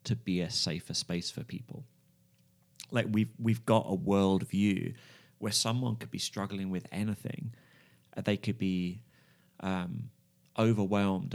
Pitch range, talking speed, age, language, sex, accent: 90-110 Hz, 130 wpm, 30-49, English, male, British